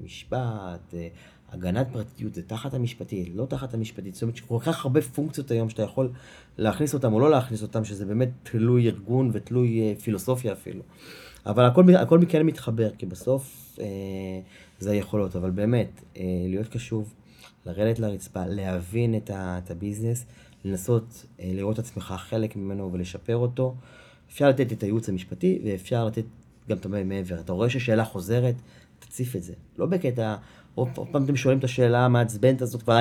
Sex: male